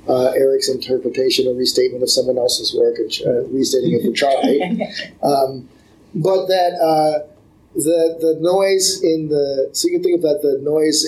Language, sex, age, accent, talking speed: English, male, 30-49, American, 180 wpm